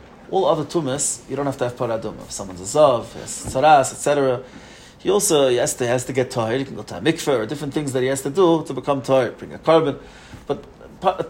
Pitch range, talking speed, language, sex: 135-190 Hz, 235 wpm, English, male